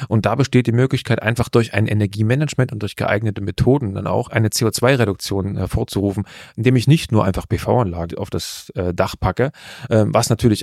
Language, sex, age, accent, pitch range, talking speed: German, male, 30-49, German, 105-125 Hz, 180 wpm